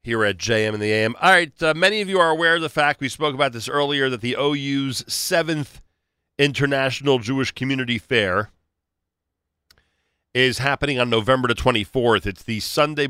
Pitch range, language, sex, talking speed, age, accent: 100-130 Hz, English, male, 180 wpm, 40-59, American